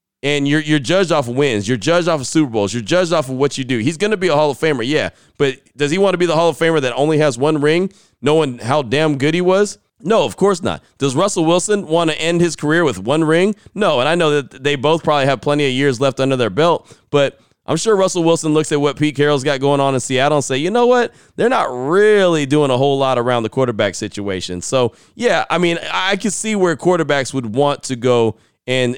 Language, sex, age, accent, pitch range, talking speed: English, male, 30-49, American, 125-165 Hz, 260 wpm